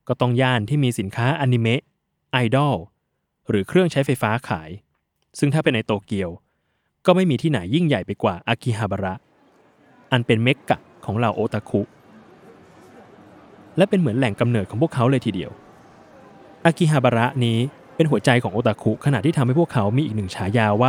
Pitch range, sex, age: 105-140 Hz, male, 20-39